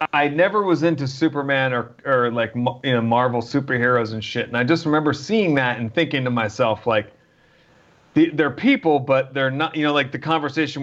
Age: 40-59